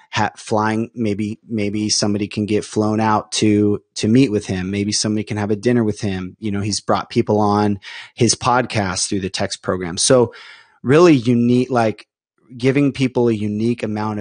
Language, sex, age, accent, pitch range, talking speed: English, male, 30-49, American, 105-120 Hz, 175 wpm